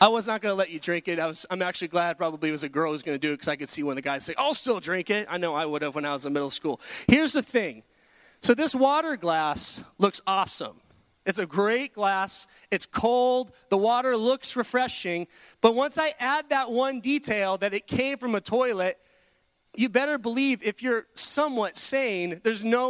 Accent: American